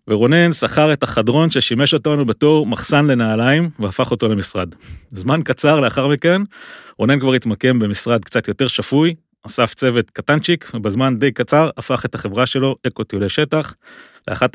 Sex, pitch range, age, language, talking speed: male, 115-150 Hz, 30-49, Hebrew, 155 wpm